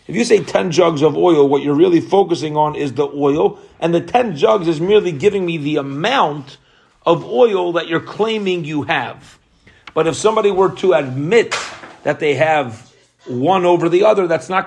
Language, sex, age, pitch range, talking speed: English, male, 40-59, 145-185 Hz, 190 wpm